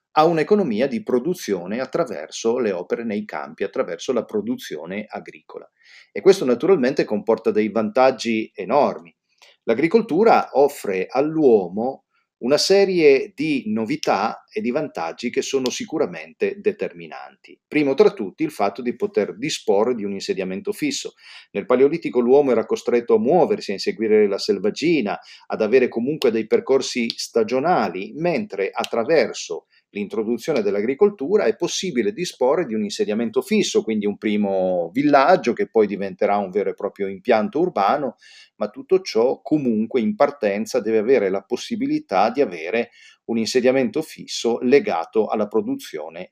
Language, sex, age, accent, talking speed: Italian, male, 40-59, native, 135 wpm